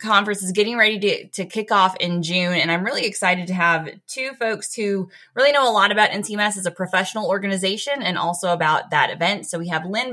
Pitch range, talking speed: 175-210 Hz, 225 wpm